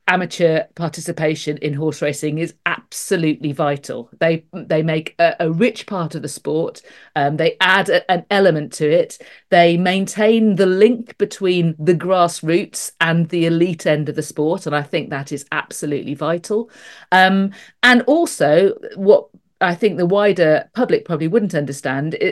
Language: English